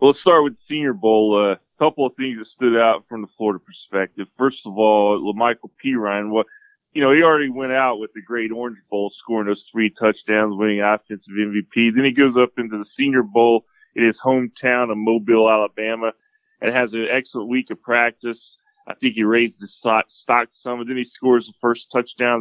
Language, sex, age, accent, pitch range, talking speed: English, male, 20-39, American, 110-130 Hz, 210 wpm